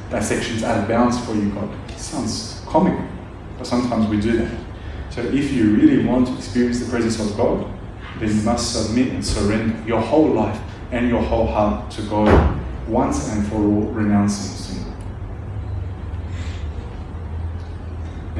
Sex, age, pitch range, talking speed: male, 30-49, 95-115 Hz, 155 wpm